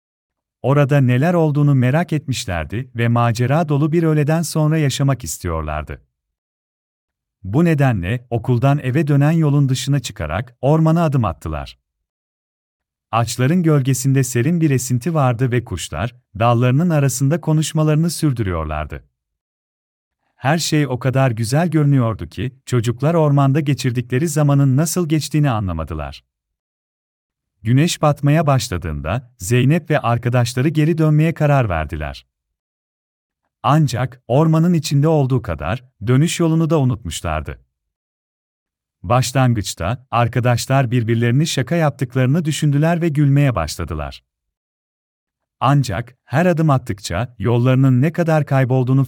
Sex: male